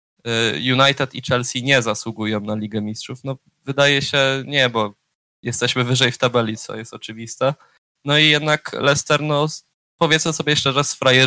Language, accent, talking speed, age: Polish, native, 150 wpm, 20-39